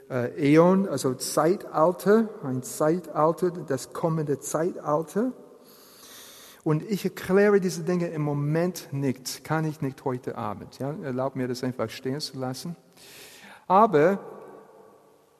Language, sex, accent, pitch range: German, male, German, 130-160 Hz